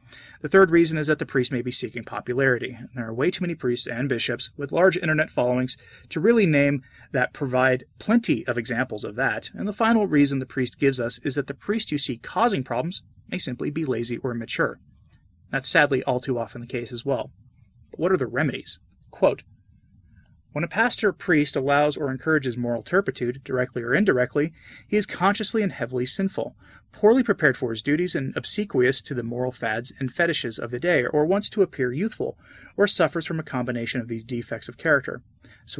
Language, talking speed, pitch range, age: English, 205 wpm, 120-165 Hz, 30-49